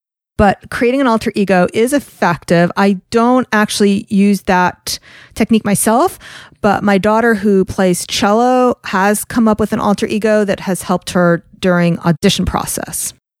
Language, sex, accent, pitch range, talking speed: English, female, American, 185-260 Hz, 150 wpm